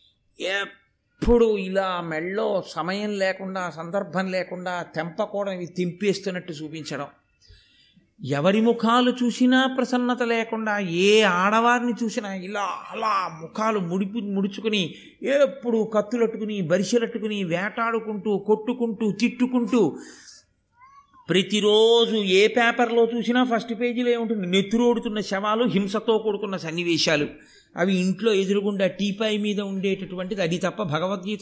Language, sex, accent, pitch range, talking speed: Telugu, male, native, 180-230 Hz, 100 wpm